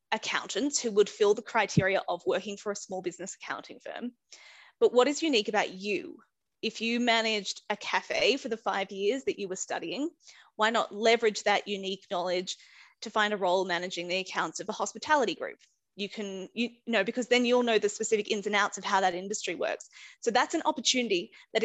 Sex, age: female, 20-39